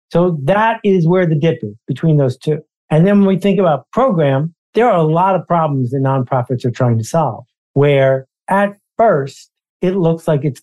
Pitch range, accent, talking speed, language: 135-175 Hz, American, 205 wpm, English